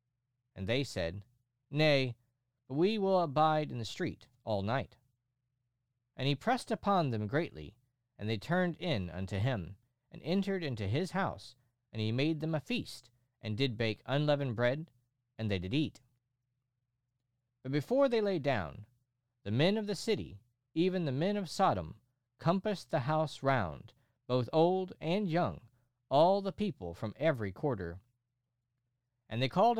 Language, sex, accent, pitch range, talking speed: English, male, American, 120-160 Hz, 155 wpm